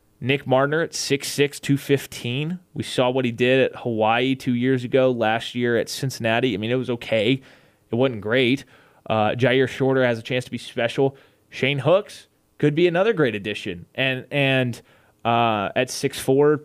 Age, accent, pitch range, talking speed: 20-39, American, 110-135 Hz, 175 wpm